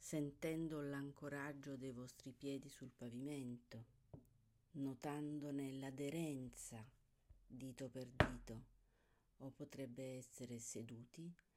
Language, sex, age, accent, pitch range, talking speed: Italian, female, 50-69, native, 120-170 Hz, 85 wpm